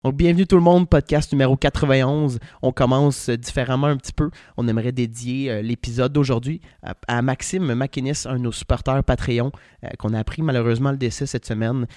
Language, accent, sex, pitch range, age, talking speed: French, Canadian, male, 110-135 Hz, 20-39, 195 wpm